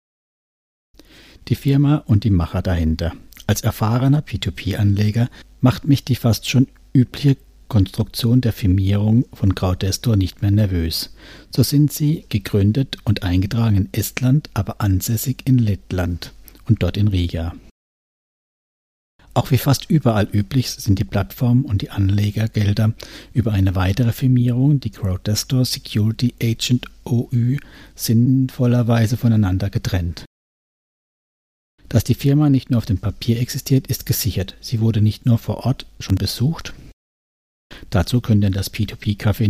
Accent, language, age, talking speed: German, German, 60-79, 130 wpm